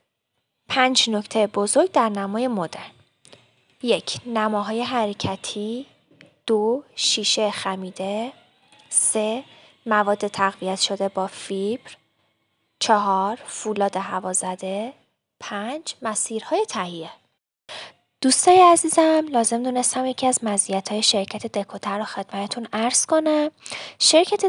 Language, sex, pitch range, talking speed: Persian, female, 205-290 Hz, 95 wpm